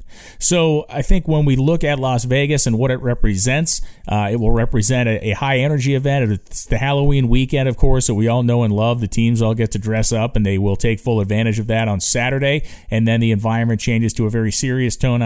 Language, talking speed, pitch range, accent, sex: English, 240 wpm, 110-135 Hz, American, male